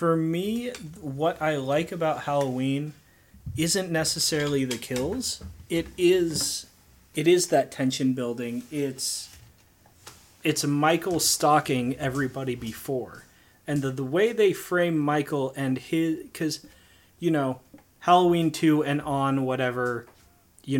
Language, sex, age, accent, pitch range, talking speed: English, male, 30-49, American, 125-160 Hz, 120 wpm